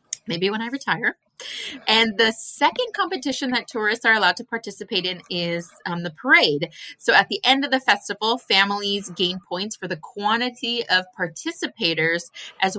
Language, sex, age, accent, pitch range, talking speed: English, female, 20-39, American, 165-235 Hz, 165 wpm